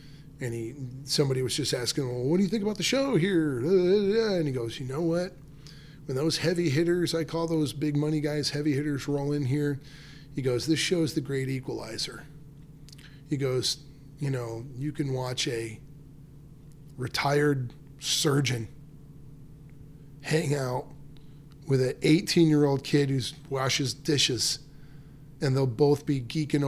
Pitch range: 130-150 Hz